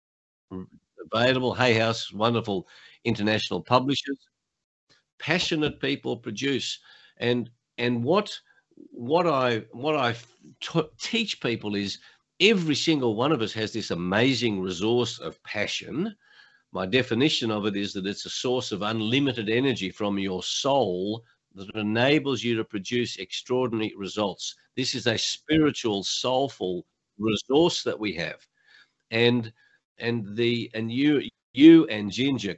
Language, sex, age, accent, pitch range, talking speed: English, male, 50-69, Australian, 110-155 Hz, 125 wpm